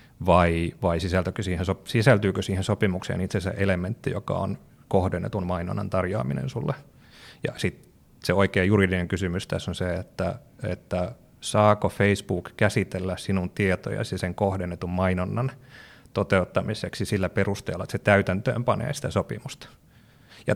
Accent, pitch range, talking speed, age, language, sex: native, 95-110 Hz, 125 wpm, 30-49, Finnish, male